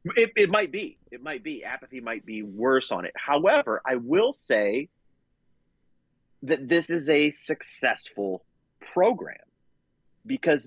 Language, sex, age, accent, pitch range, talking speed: English, male, 30-49, American, 100-160 Hz, 135 wpm